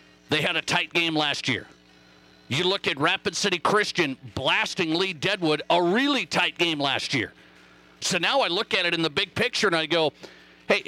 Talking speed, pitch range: 200 wpm, 155-205 Hz